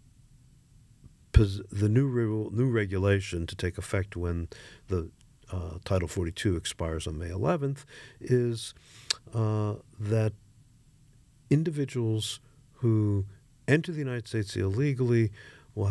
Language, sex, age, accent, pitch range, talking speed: English, male, 50-69, American, 90-130 Hz, 105 wpm